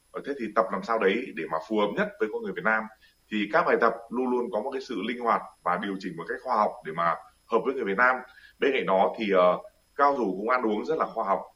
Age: 20-39